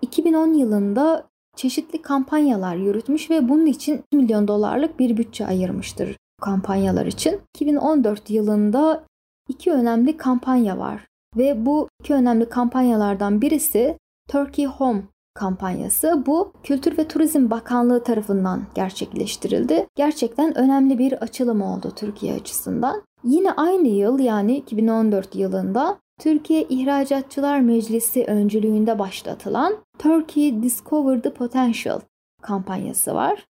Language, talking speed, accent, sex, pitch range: English, 110 wpm, Turkish, female, 215-290 Hz